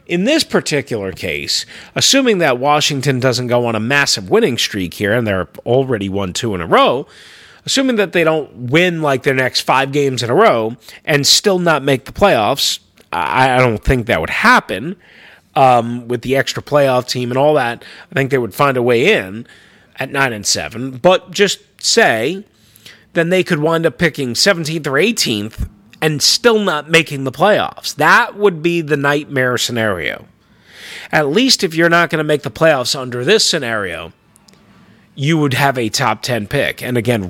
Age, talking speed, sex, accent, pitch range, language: 30-49, 185 wpm, male, American, 120-160 Hz, English